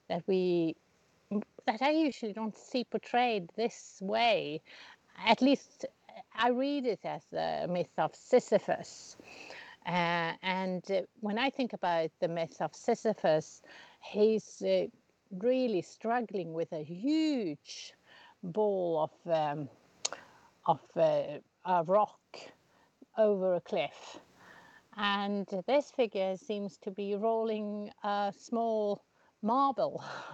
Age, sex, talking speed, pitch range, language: 50-69, female, 115 wpm, 180-225 Hz, English